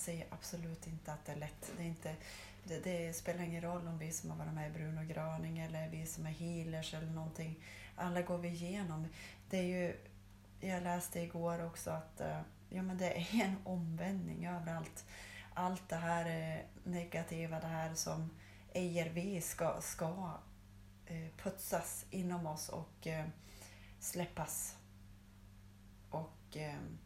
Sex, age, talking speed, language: female, 30-49, 150 wpm, Swedish